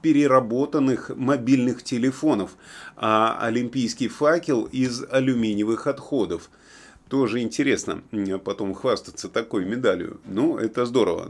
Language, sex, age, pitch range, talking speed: Russian, male, 30-49, 110-140 Hz, 95 wpm